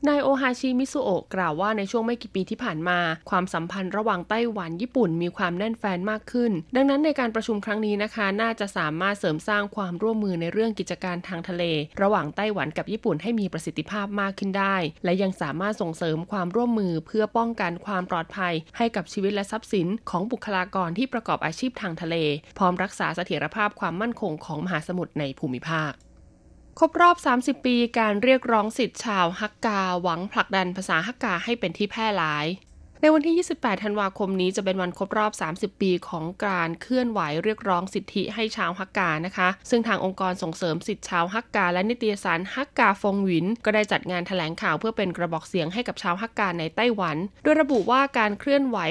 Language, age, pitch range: Thai, 20-39, 175-225 Hz